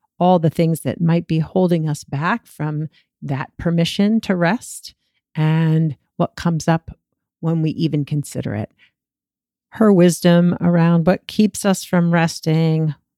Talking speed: 140 wpm